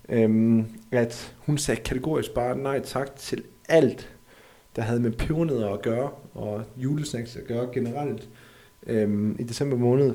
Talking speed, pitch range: 150 wpm, 115-135 Hz